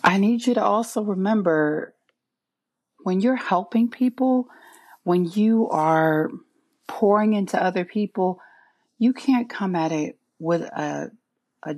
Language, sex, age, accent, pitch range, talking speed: English, female, 40-59, American, 155-210 Hz, 125 wpm